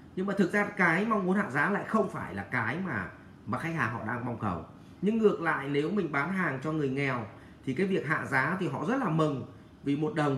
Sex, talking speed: male, 260 wpm